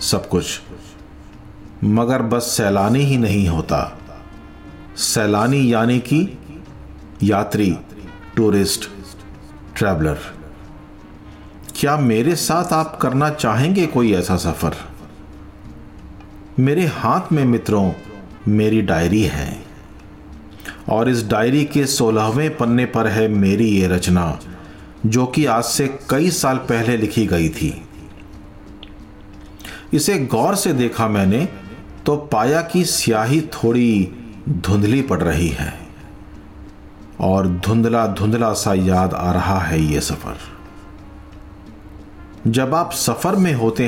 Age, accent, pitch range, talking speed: 40-59, native, 90-120 Hz, 110 wpm